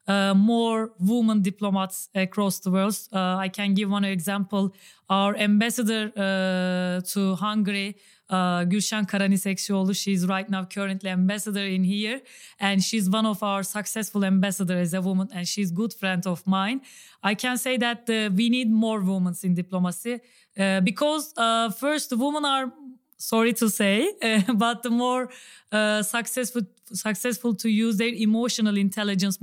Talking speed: 160 wpm